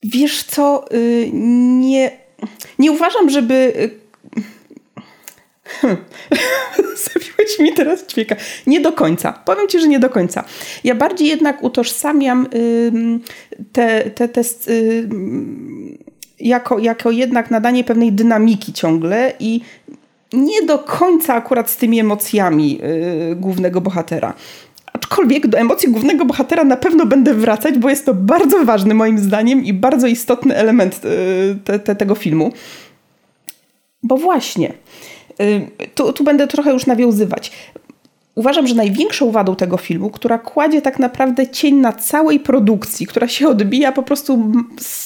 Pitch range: 225-285 Hz